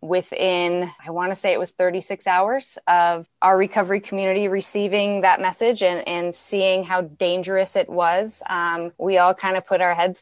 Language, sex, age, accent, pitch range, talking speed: English, female, 20-39, American, 160-190 Hz, 180 wpm